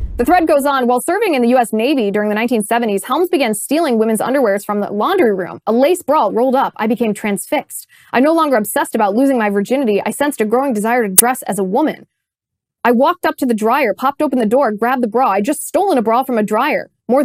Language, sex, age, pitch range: English, female, 20-39, 205-260 Hz